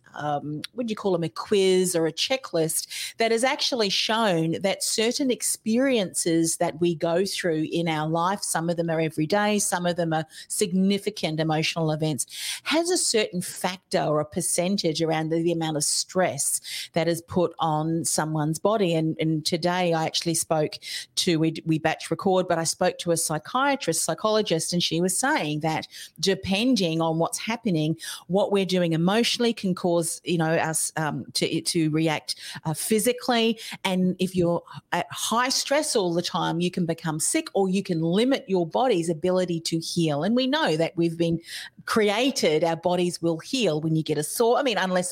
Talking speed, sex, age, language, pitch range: 185 wpm, female, 40-59, English, 165-210 Hz